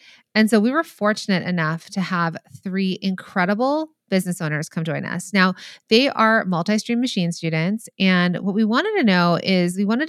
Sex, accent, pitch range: female, American, 175-225 Hz